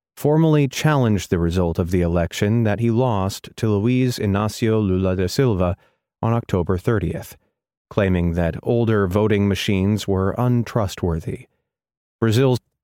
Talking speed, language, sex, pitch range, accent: 125 wpm, English, male, 95-115 Hz, American